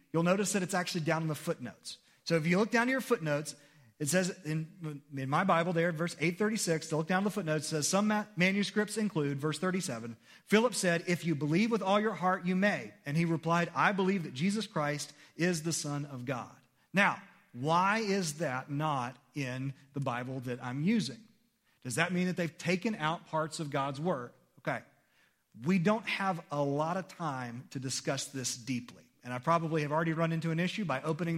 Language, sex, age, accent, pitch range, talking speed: English, male, 40-59, American, 150-190 Hz, 205 wpm